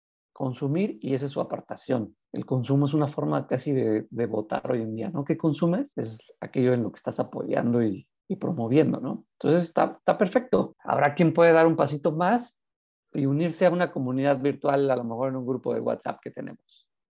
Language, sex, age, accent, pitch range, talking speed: Spanish, male, 50-69, Mexican, 130-170 Hz, 205 wpm